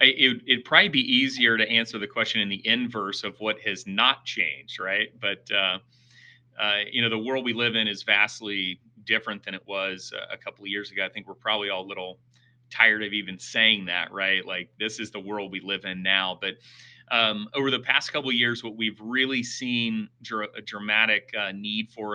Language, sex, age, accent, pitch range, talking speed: English, male, 30-49, American, 100-120 Hz, 215 wpm